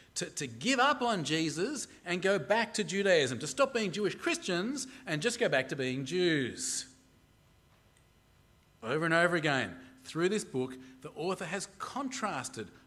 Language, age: English, 40-59